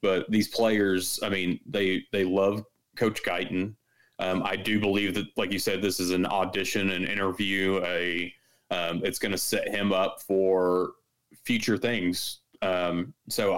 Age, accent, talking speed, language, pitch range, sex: 30-49, American, 165 wpm, English, 90-105 Hz, male